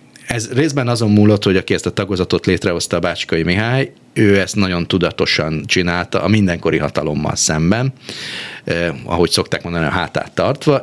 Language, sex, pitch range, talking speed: Hungarian, male, 90-120 Hz, 155 wpm